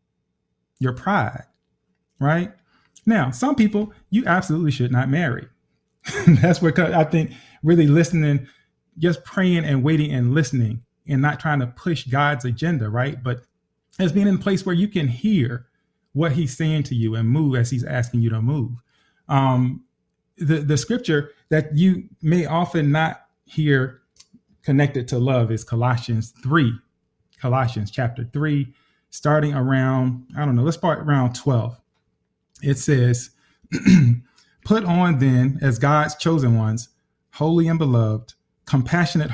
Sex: male